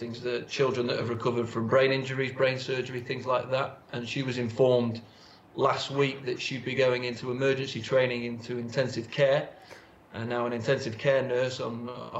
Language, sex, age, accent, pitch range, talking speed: English, male, 30-49, British, 125-140 Hz, 185 wpm